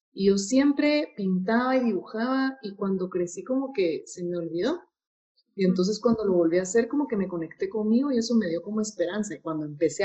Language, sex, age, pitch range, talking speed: Spanish, female, 30-49, 180-230 Hz, 210 wpm